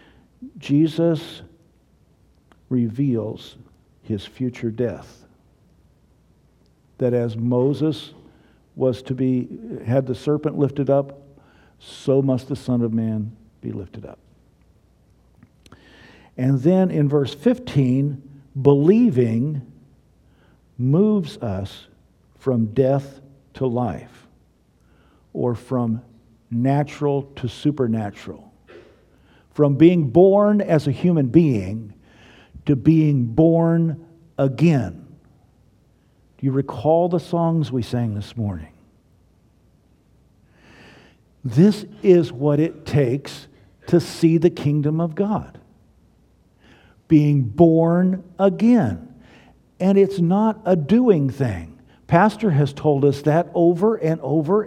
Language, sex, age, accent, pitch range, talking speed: English, male, 50-69, American, 120-165 Hz, 100 wpm